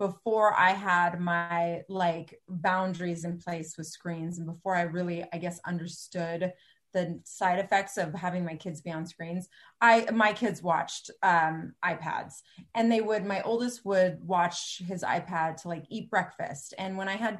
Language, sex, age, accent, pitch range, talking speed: English, female, 30-49, American, 175-225 Hz, 170 wpm